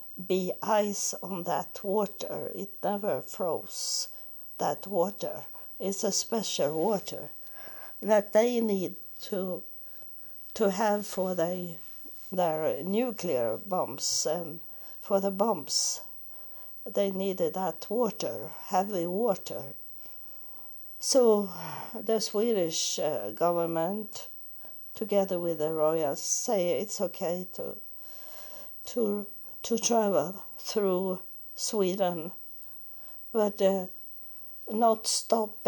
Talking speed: 95 wpm